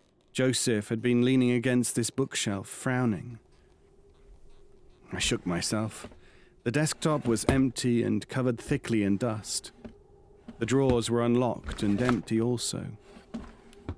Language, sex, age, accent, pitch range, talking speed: English, male, 40-59, British, 110-135 Hz, 115 wpm